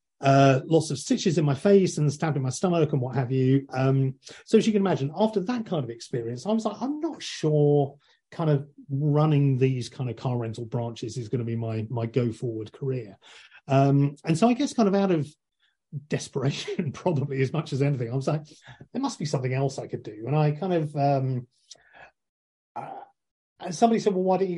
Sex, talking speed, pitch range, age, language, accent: male, 215 wpm, 130-155 Hz, 40-59, English, British